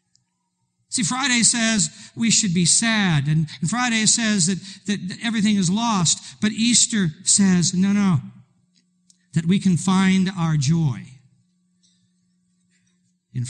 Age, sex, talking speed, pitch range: 50-69, male, 125 wpm, 150-195 Hz